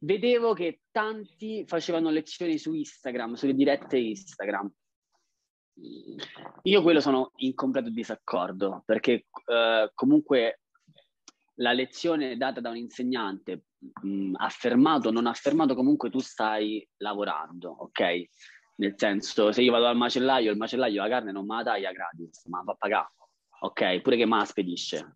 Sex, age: male, 20-39